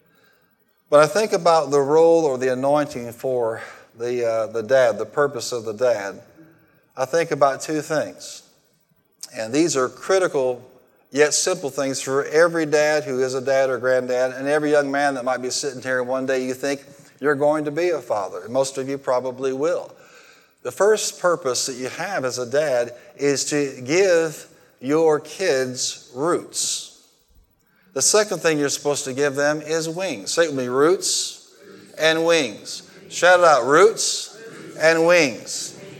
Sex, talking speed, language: male, 165 wpm, English